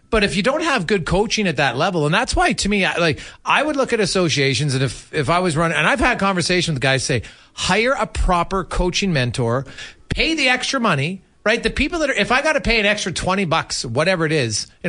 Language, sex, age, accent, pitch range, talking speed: English, male, 40-59, American, 145-205 Hz, 245 wpm